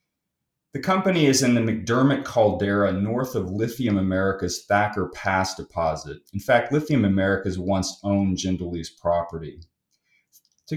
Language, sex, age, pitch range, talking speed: English, male, 30-49, 95-120 Hz, 130 wpm